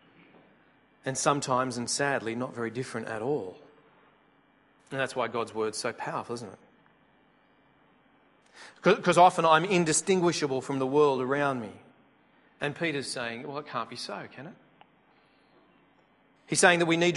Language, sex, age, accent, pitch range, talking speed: English, male, 40-59, Australian, 130-165 Hz, 150 wpm